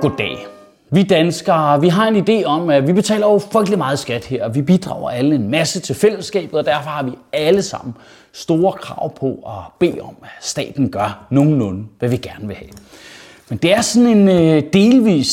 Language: Danish